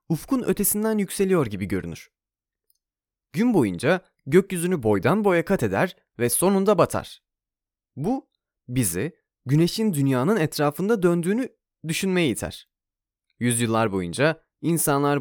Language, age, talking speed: Turkish, 30-49, 105 wpm